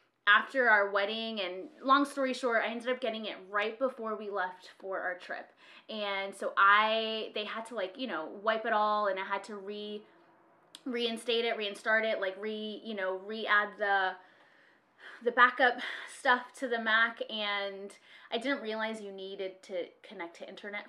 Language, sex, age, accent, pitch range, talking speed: English, female, 20-39, American, 200-255 Hz, 180 wpm